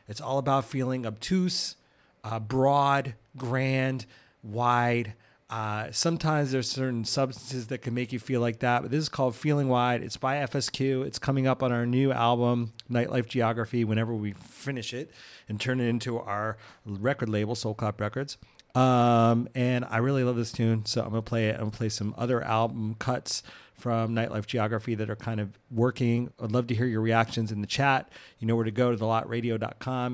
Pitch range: 110-130 Hz